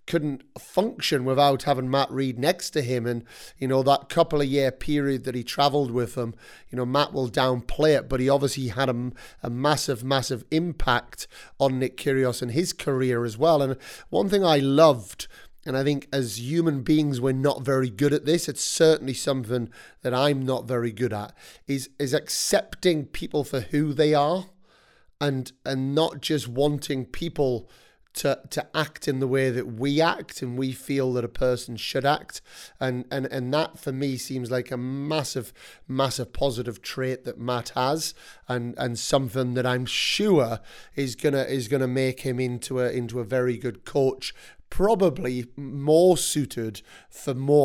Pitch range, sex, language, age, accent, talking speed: 125-145 Hz, male, English, 30-49, British, 180 wpm